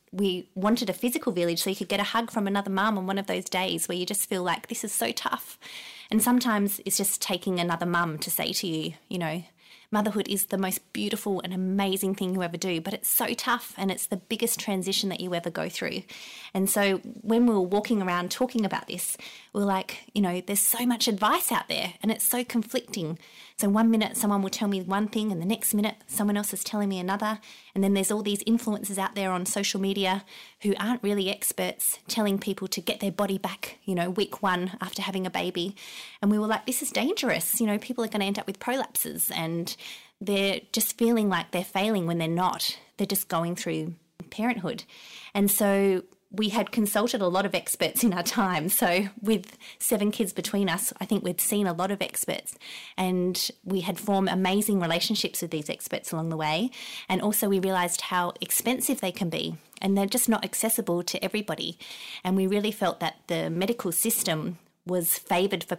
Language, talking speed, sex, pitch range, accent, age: English, 215 wpm, female, 185-215 Hz, Australian, 20-39